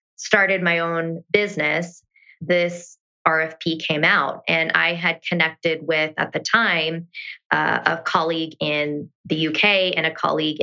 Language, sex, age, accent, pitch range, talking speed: English, female, 20-39, American, 155-180 Hz, 140 wpm